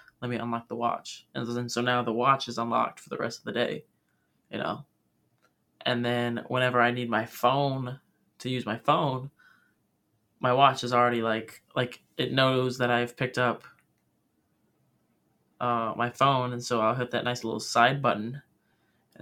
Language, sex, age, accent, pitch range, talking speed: English, male, 20-39, American, 115-130 Hz, 175 wpm